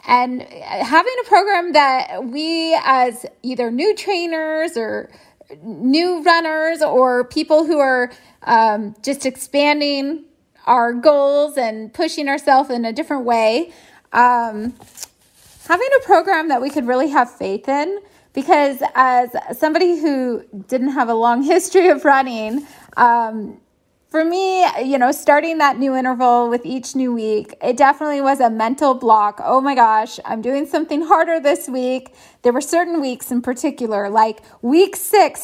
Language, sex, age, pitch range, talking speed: English, female, 20-39, 245-315 Hz, 150 wpm